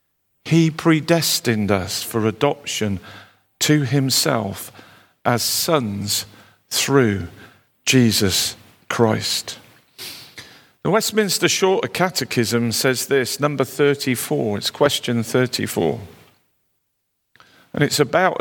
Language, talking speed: English, 85 wpm